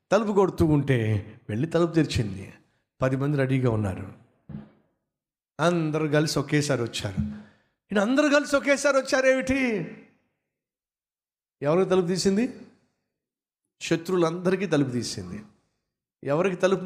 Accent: native